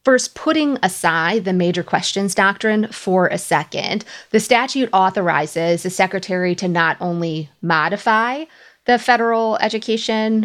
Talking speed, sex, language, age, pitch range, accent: 125 wpm, female, English, 30-49, 185-235 Hz, American